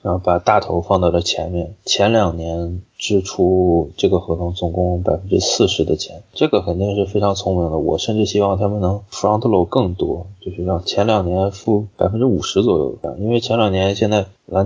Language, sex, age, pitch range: Chinese, male, 20-39, 90-100 Hz